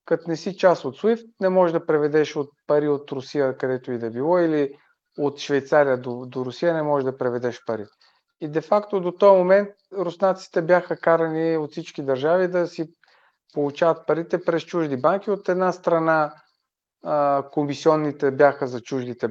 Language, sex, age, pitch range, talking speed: Bulgarian, male, 40-59, 140-190 Hz, 165 wpm